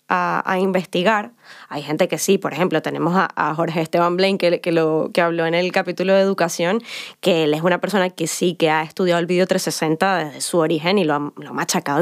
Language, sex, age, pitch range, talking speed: Spanish, female, 10-29, 175-230 Hz, 230 wpm